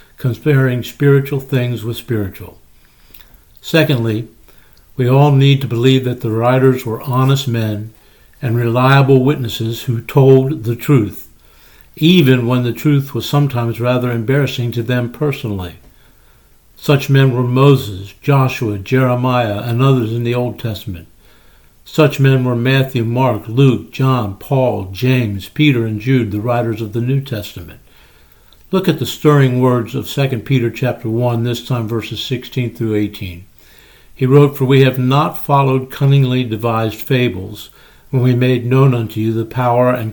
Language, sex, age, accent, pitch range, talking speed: English, male, 60-79, American, 110-135 Hz, 150 wpm